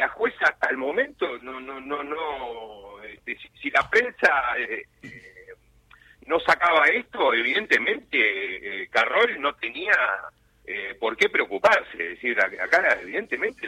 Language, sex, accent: Spanish, male, Argentinian